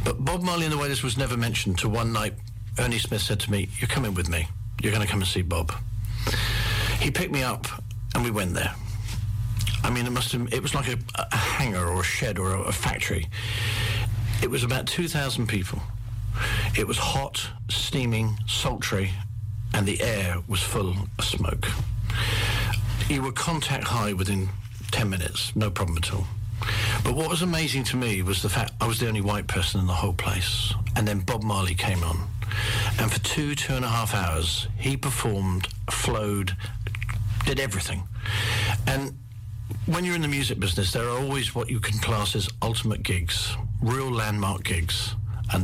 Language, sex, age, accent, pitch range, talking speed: Dutch, male, 50-69, British, 100-115 Hz, 185 wpm